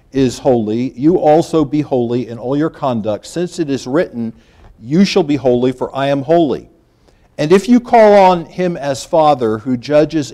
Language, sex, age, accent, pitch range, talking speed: English, male, 50-69, American, 125-155 Hz, 185 wpm